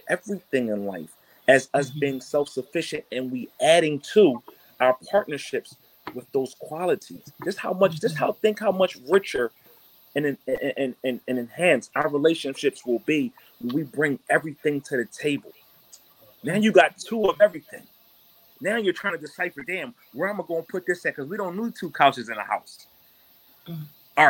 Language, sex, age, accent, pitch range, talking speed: English, male, 30-49, American, 135-180 Hz, 180 wpm